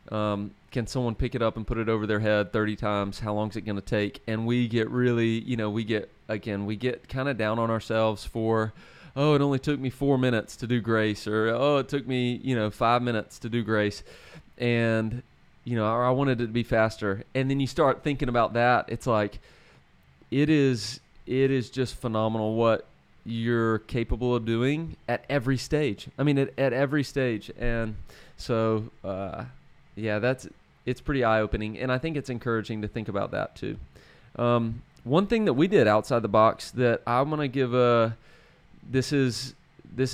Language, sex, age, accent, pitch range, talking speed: English, male, 30-49, American, 110-130 Hz, 200 wpm